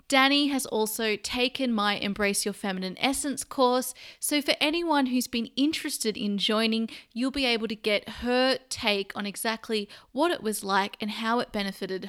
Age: 30-49